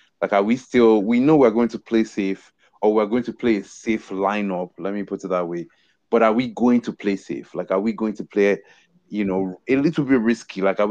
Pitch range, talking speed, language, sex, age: 95-110 Hz, 255 wpm, English, male, 20-39